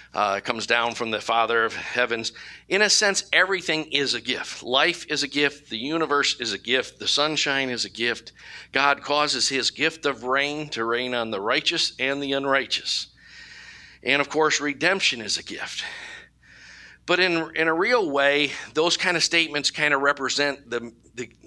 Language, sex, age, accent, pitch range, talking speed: English, male, 50-69, American, 115-145 Hz, 180 wpm